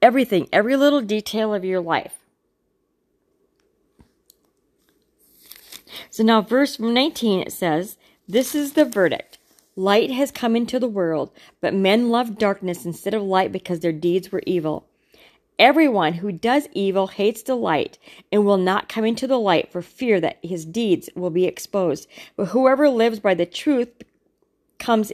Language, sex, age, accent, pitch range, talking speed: English, female, 40-59, American, 185-245 Hz, 155 wpm